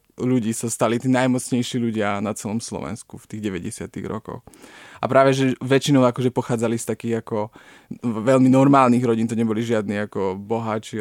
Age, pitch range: 20-39, 110-125 Hz